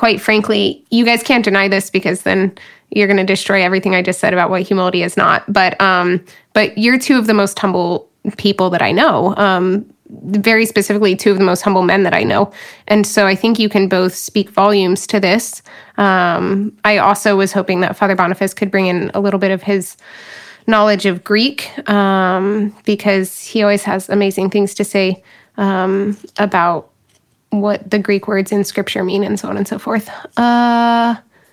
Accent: American